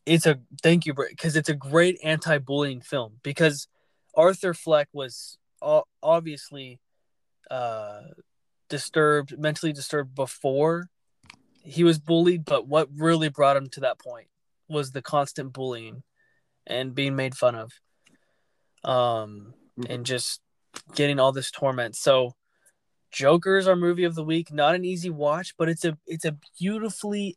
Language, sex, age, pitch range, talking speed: English, male, 20-39, 135-165 Hz, 140 wpm